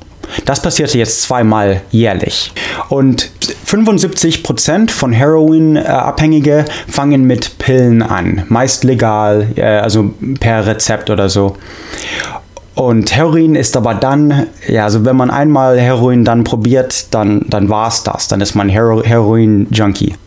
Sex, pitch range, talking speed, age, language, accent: male, 110-145 Hz, 120 wpm, 20-39, English, German